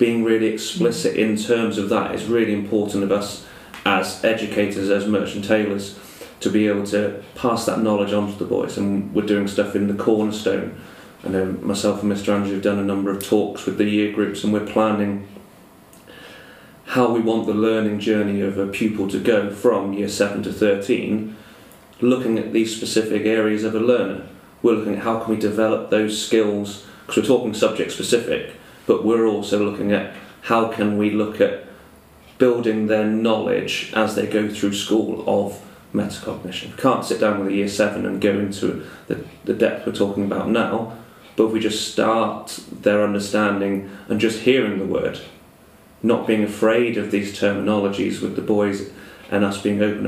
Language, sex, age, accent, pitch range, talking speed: English, male, 30-49, British, 100-110 Hz, 185 wpm